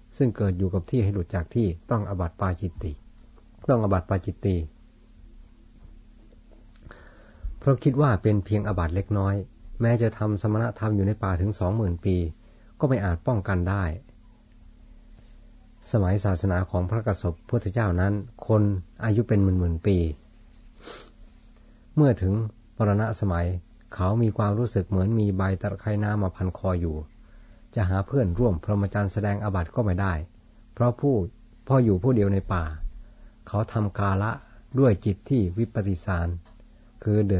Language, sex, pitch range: Thai, male, 95-115 Hz